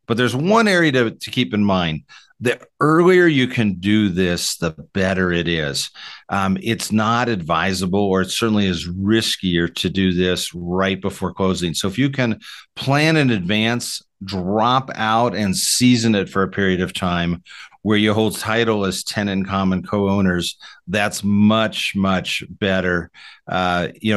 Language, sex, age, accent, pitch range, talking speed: English, male, 50-69, American, 90-110 Hz, 165 wpm